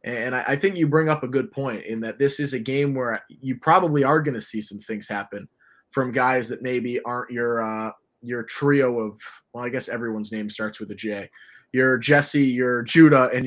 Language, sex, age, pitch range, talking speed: English, male, 20-39, 120-145 Hz, 220 wpm